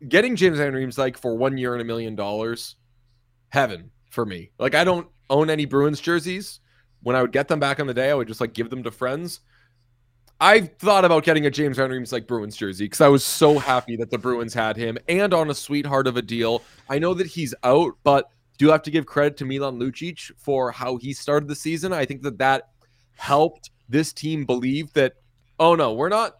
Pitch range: 120-145 Hz